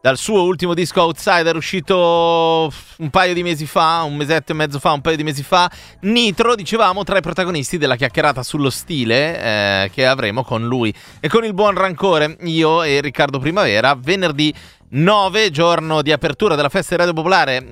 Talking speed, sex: 185 wpm, male